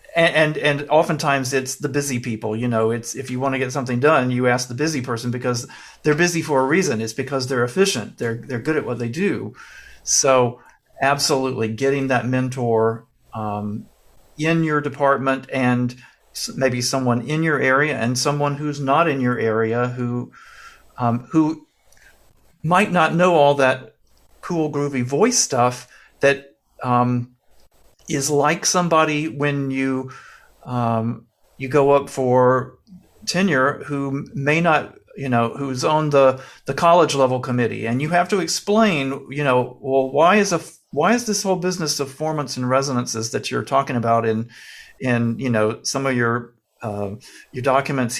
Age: 50-69